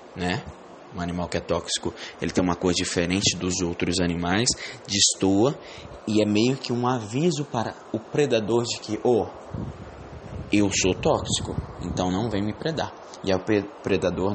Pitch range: 90-110 Hz